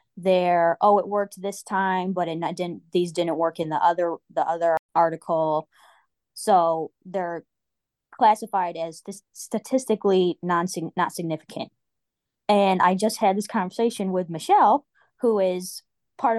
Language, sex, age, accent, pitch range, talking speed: English, female, 20-39, American, 185-225 Hz, 145 wpm